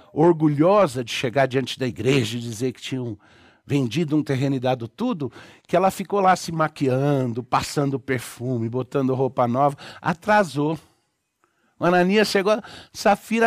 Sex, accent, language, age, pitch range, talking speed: male, Brazilian, Portuguese, 60-79, 130-185 Hz, 145 wpm